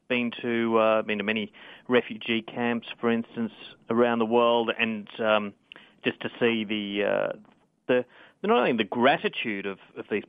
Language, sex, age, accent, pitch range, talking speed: English, male, 30-49, Australian, 110-125 Hz, 165 wpm